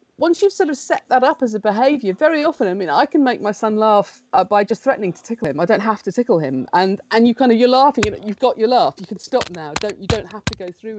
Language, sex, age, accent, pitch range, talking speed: English, female, 40-59, British, 185-250 Hz, 310 wpm